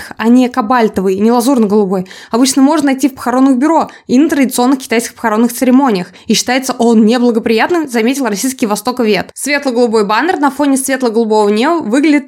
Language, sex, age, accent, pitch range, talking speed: Russian, female, 20-39, native, 230-290 Hz, 155 wpm